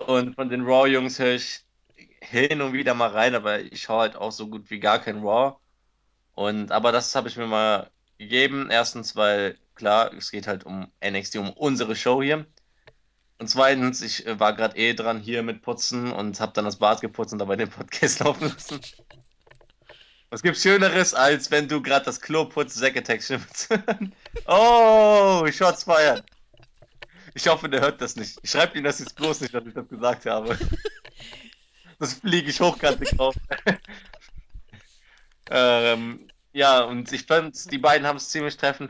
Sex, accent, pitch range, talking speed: male, German, 110-140 Hz, 175 wpm